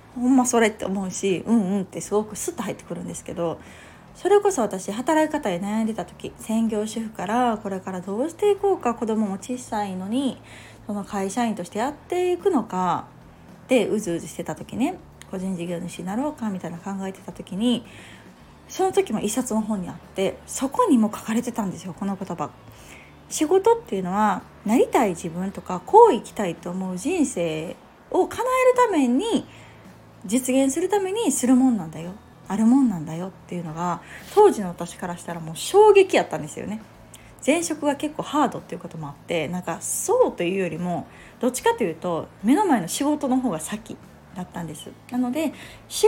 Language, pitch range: Japanese, 180-275 Hz